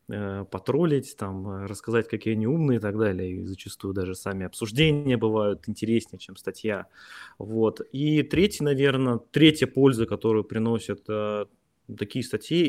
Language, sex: Russian, male